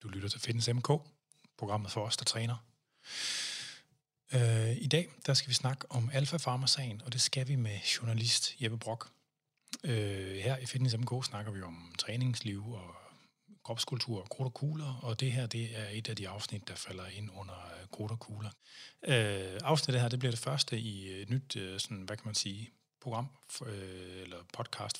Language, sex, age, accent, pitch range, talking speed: Danish, male, 30-49, native, 100-125 Hz, 185 wpm